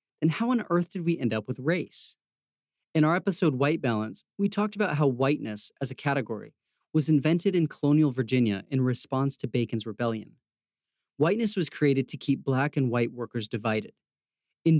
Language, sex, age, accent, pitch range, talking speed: English, male, 30-49, American, 120-155 Hz, 180 wpm